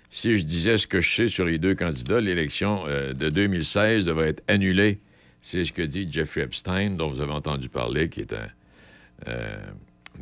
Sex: male